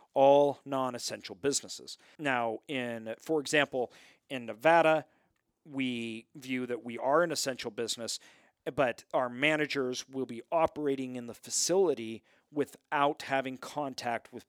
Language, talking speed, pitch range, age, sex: English, 125 wpm, 120-145 Hz, 40-59, male